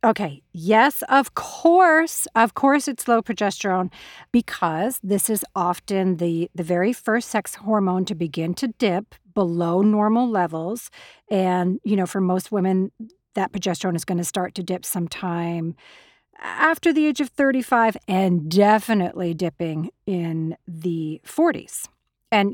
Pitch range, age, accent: 175-220 Hz, 40-59, American